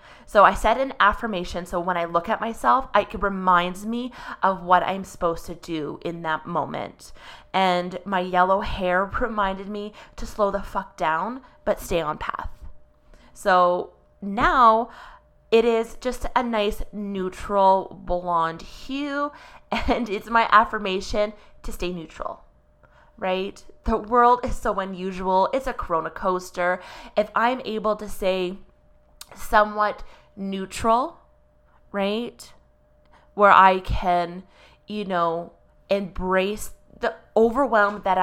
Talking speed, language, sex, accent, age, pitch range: 130 wpm, English, female, American, 20-39, 180-220 Hz